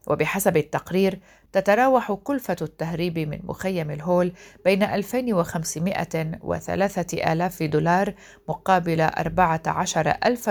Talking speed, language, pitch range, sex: 85 wpm, Arabic, 155-190 Hz, female